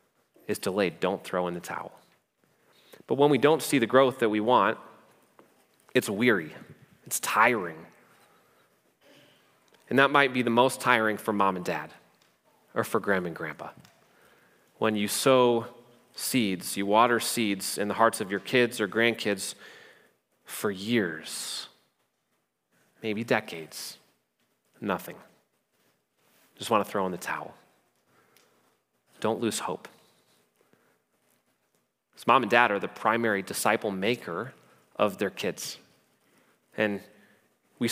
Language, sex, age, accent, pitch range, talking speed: English, male, 30-49, American, 110-140 Hz, 130 wpm